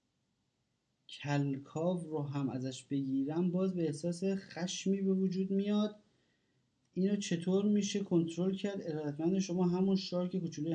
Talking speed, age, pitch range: 125 wpm, 30-49, 135-185 Hz